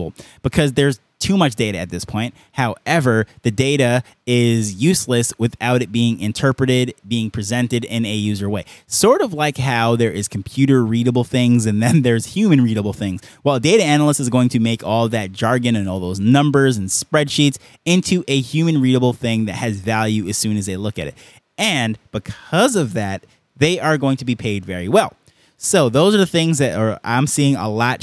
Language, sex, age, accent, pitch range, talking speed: English, male, 20-39, American, 115-145 Hz, 195 wpm